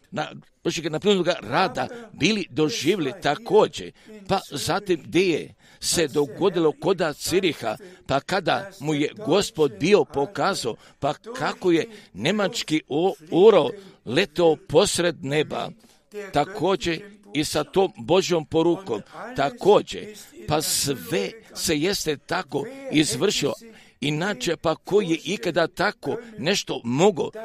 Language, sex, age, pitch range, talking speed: Croatian, male, 50-69, 155-205 Hz, 110 wpm